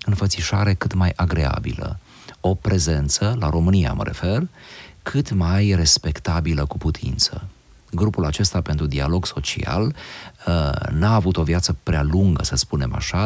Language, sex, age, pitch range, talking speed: Romanian, male, 40-59, 75-100 Hz, 130 wpm